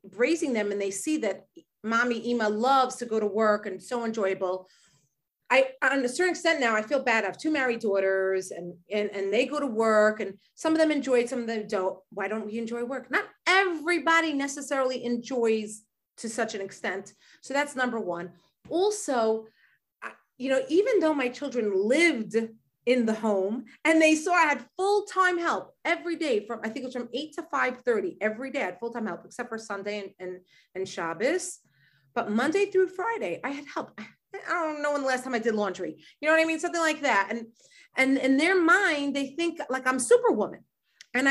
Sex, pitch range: female, 210-295 Hz